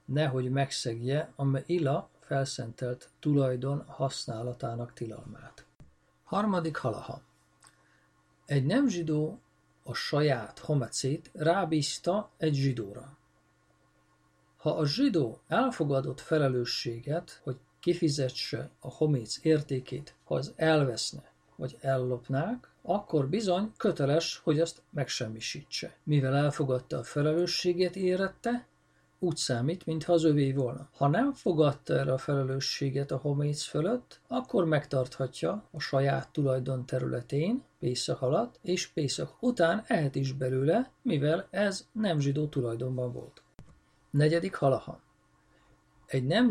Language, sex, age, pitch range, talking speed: Hungarian, male, 50-69, 125-165 Hz, 105 wpm